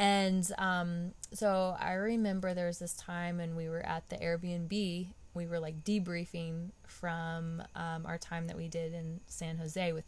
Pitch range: 165-185 Hz